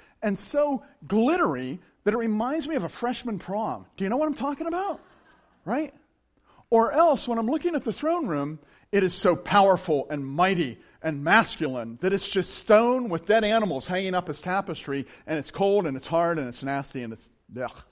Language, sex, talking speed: English, male, 200 wpm